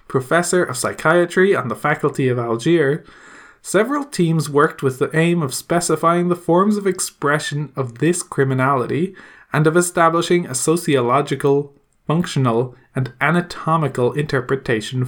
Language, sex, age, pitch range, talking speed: English, male, 20-39, 135-175 Hz, 125 wpm